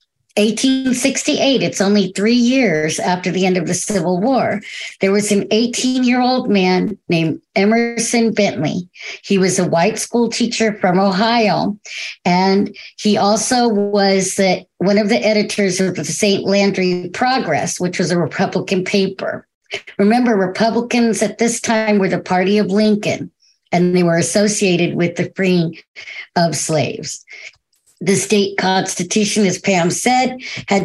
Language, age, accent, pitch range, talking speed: English, 50-69, American, 185-225 Hz, 145 wpm